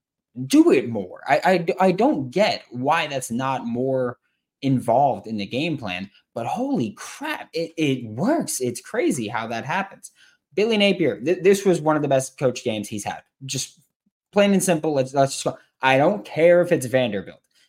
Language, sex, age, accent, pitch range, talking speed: English, male, 20-39, American, 125-190 Hz, 165 wpm